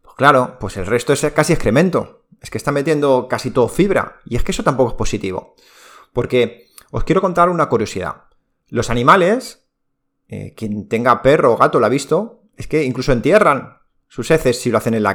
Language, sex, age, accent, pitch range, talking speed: Spanish, male, 30-49, Spanish, 115-175 Hz, 195 wpm